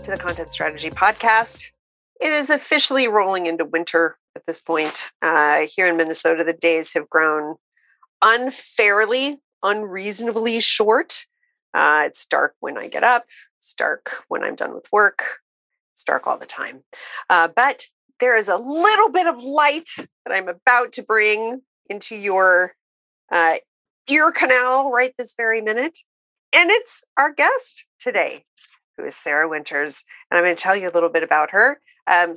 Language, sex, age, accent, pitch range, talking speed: English, female, 40-59, American, 170-255 Hz, 160 wpm